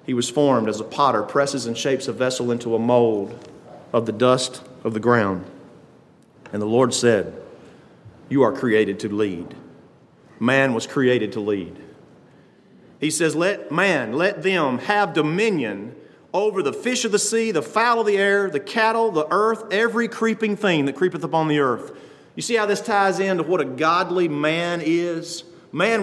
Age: 40-59